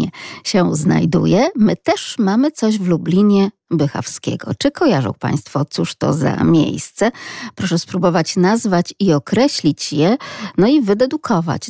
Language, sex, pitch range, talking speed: Polish, female, 160-220 Hz, 130 wpm